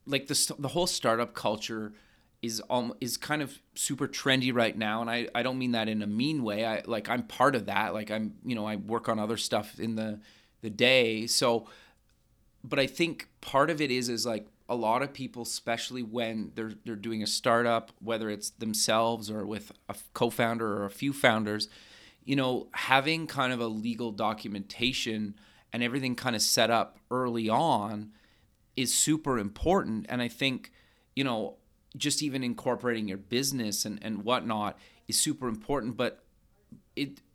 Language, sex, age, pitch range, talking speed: English, male, 30-49, 110-130 Hz, 180 wpm